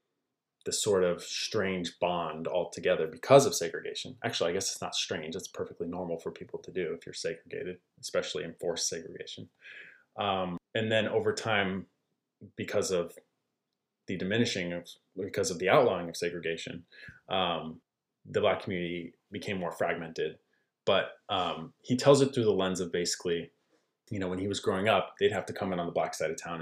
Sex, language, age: male, English, 20-39